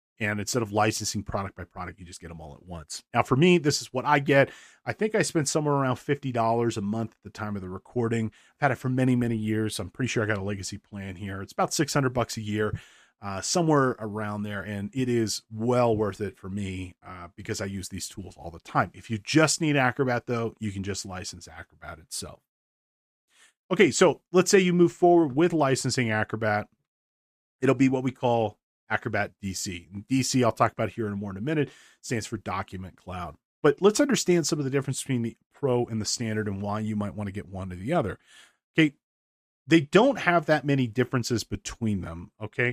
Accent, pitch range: American, 100-135 Hz